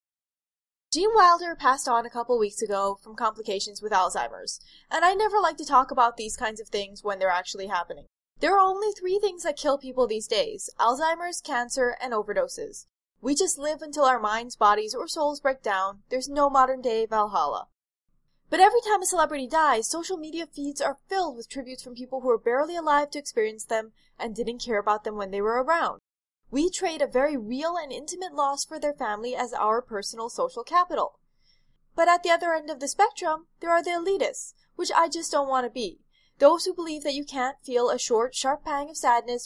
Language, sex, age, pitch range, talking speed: English, female, 10-29, 225-335 Hz, 205 wpm